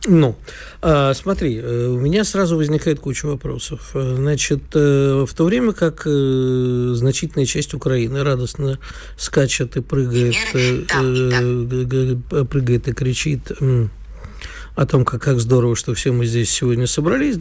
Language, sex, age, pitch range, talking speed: Russian, male, 50-69, 125-155 Hz, 140 wpm